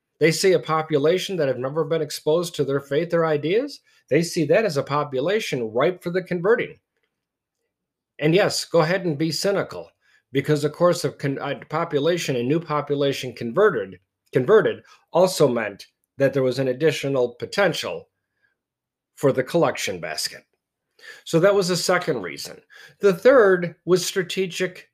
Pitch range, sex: 140-185 Hz, male